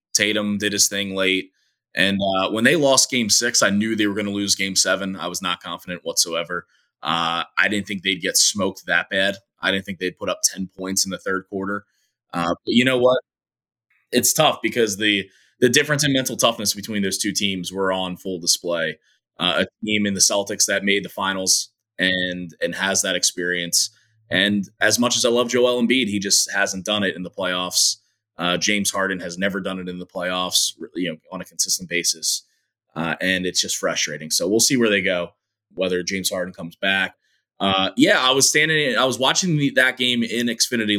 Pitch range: 95-115 Hz